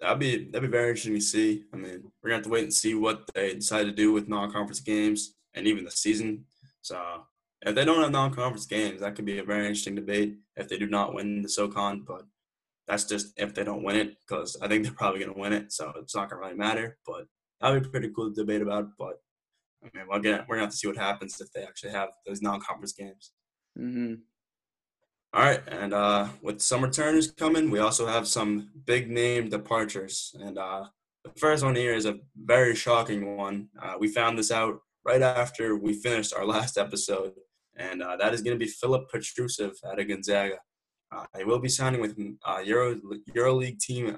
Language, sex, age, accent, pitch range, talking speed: English, male, 10-29, American, 105-120 Hz, 225 wpm